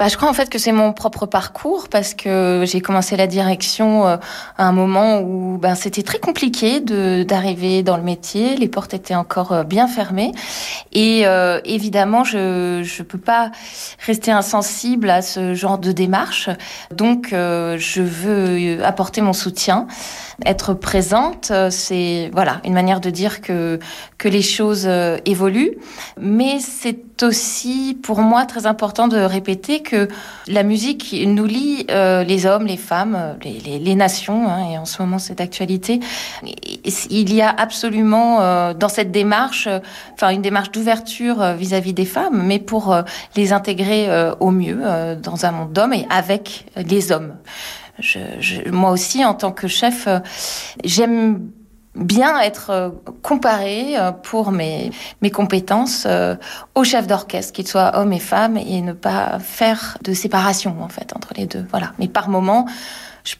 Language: French